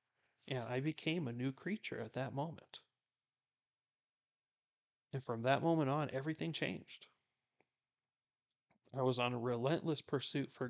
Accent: American